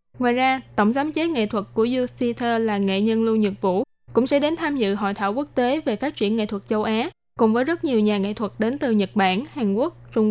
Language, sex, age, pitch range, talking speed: Vietnamese, female, 10-29, 210-255 Hz, 260 wpm